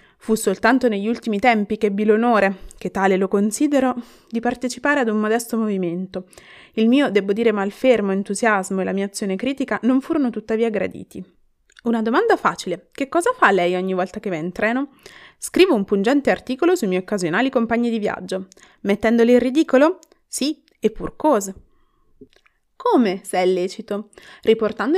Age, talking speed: 20-39, 165 wpm